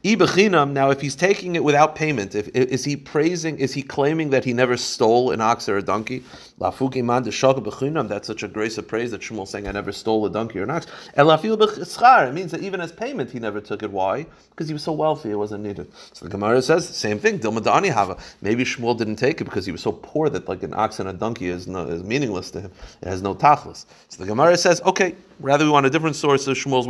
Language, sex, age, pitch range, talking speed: English, male, 30-49, 100-140 Hz, 235 wpm